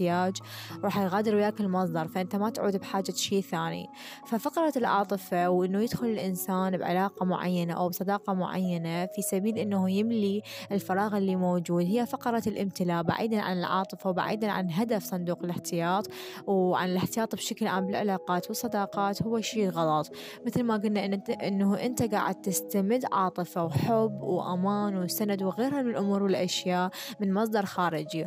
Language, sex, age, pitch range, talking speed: Arabic, female, 20-39, 180-220 Hz, 140 wpm